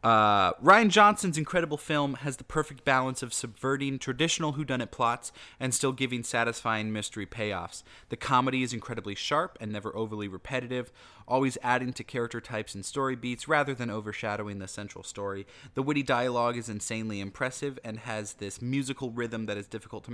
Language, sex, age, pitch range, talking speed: English, male, 20-39, 110-140 Hz, 180 wpm